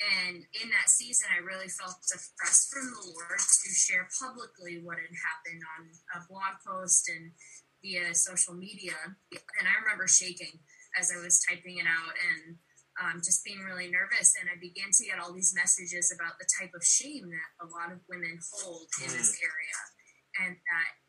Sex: female